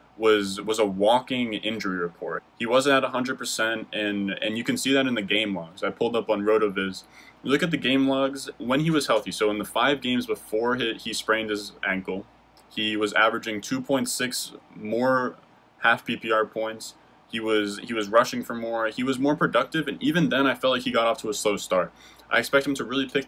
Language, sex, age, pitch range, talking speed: English, male, 20-39, 105-135 Hz, 215 wpm